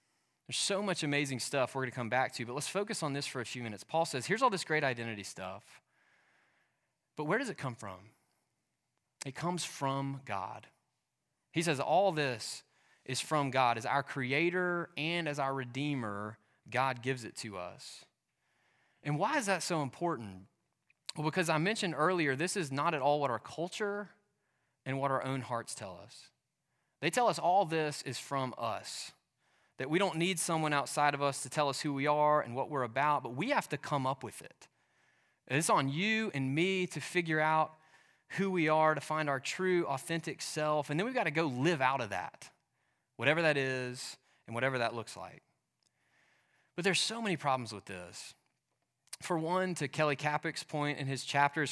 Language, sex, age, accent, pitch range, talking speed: English, male, 20-39, American, 130-170 Hz, 195 wpm